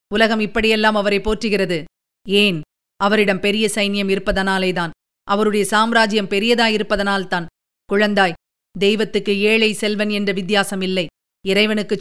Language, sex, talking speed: Tamil, female, 100 wpm